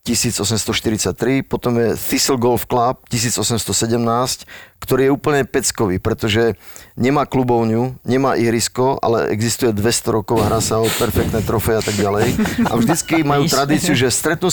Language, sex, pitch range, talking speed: Slovak, male, 110-130 Hz, 145 wpm